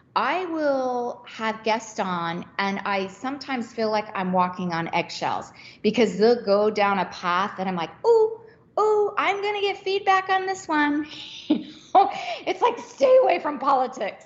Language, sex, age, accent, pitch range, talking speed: English, female, 40-59, American, 195-290 Hz, 160 wpm